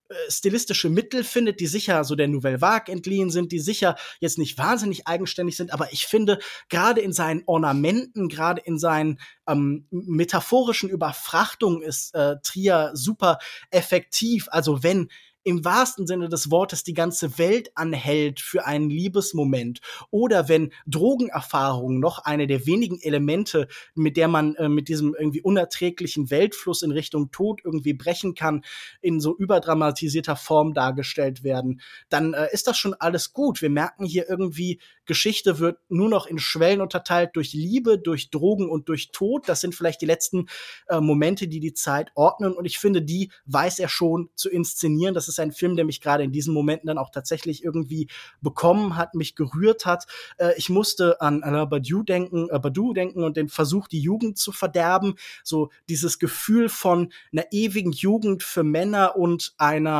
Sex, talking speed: male, 170 wpm